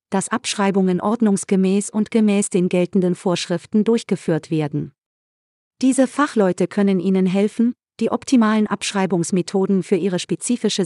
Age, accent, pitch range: 40-59, German, 175-215 Hz